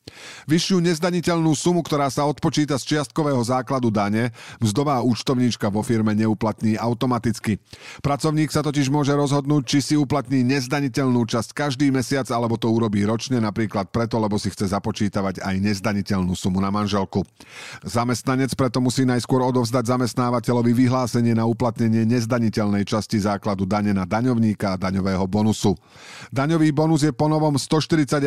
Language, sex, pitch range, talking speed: Slovak, male, 105-135 Hz, 140 wpm